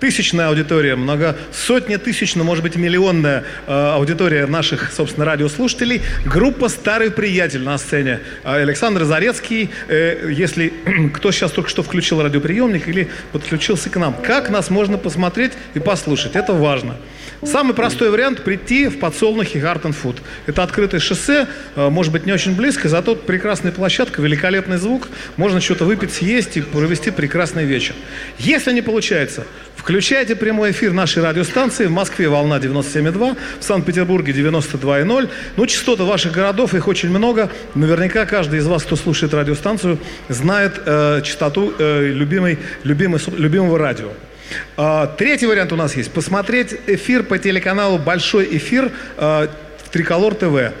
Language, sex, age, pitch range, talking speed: Russian, male, 40-59, 155-215 Hz, 145 wpm